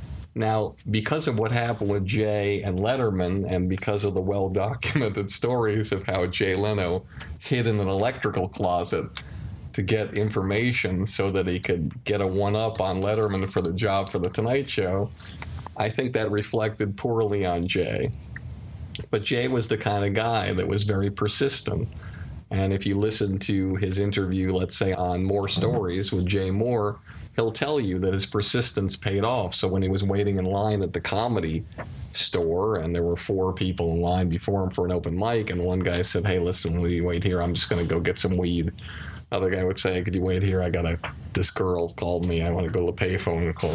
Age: 50-69